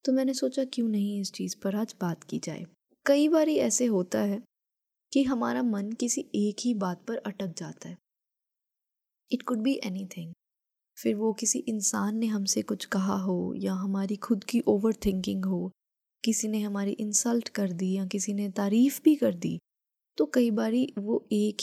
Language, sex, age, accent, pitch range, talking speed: Hindi, female, 20-39, native, 190-235 Hz, 180 wpm